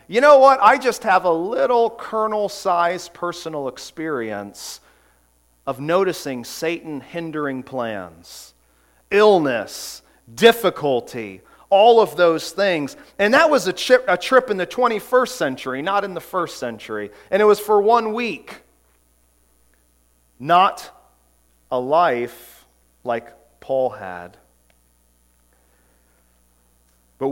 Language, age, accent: English, 40-59, American